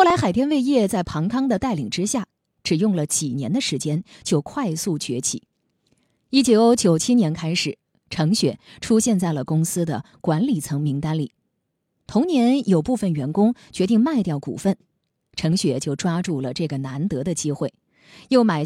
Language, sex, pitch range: Chinese, female, 155-230 Hz